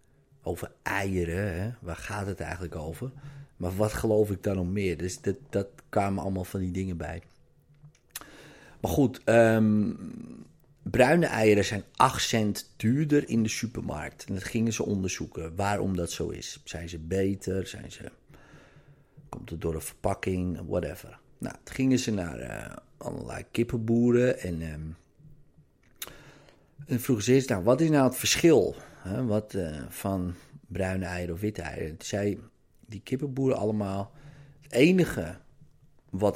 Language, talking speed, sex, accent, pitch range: Dutch, 155 wpm, male, Dutch, 95-130 Hz